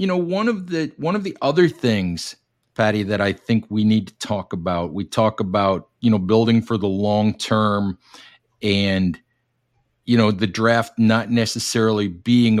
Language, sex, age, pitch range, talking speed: English, male, 50-69, 100-125 Hz, 175 wpm